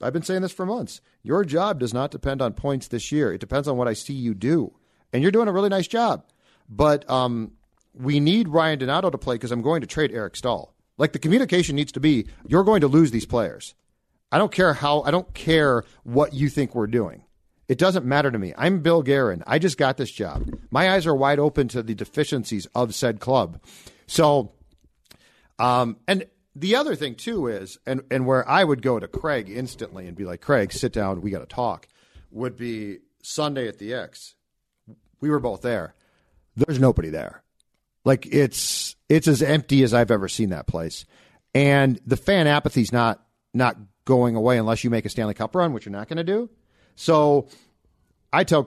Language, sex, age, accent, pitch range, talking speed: English, male, 40-59, American, 115-155 Hz, 205 wpm